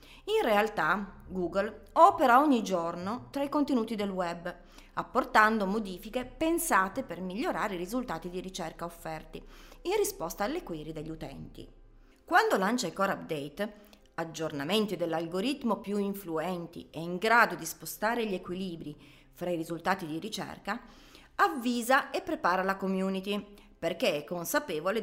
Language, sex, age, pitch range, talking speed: Italian, female, 30-49, 175-245 Hz, 135 wpm